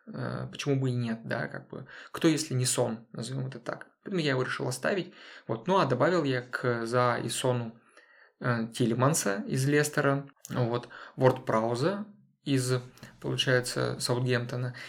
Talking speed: 140 wpm